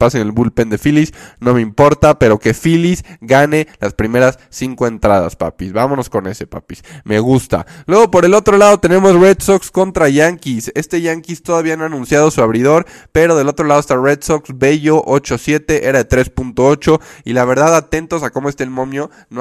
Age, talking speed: 20-39, 195 wpm